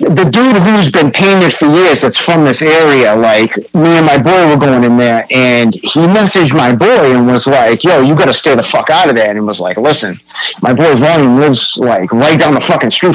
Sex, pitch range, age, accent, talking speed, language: male, 125-185 Hz, 50-69, American, 235 wpm, English